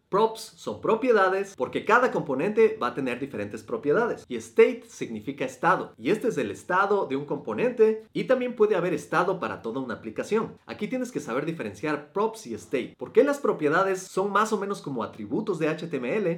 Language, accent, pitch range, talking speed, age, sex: Spanish, Mexican, 160-225 Hz, 185 wpm, 30-49, male